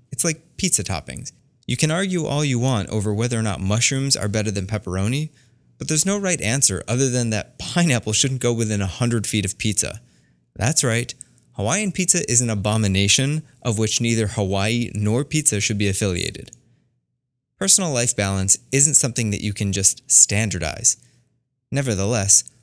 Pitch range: 100-130 Hz